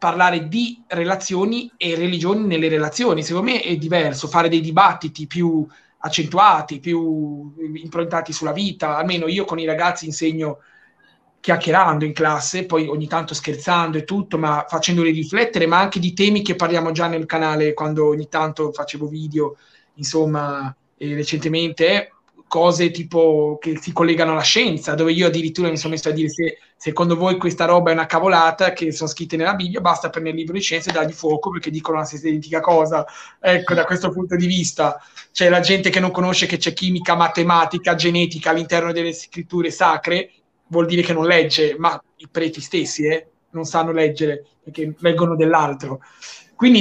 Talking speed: 175 wpm